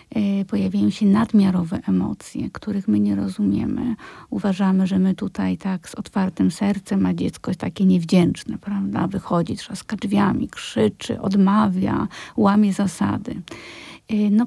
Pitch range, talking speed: 195-225 Hz, 125 wpm